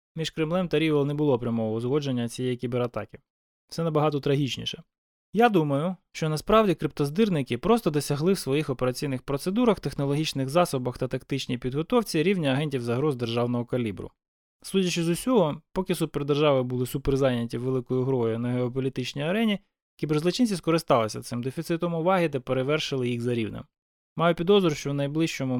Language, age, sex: Ukrainian, 20-39, male